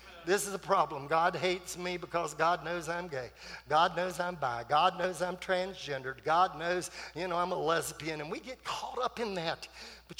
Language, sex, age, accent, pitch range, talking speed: English, male, 50-69, American, 180-235 Hz, 205 wpm